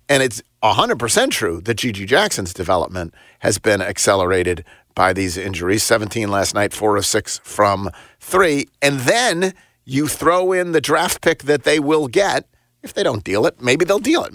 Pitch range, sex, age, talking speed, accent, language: 120-180 Hz, male, 50-69, 180 wpm, American, English